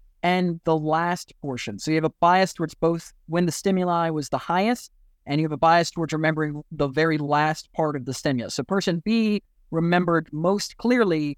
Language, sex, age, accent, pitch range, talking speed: English, male, 30-49, American, 150-180 Hz, 195 wpm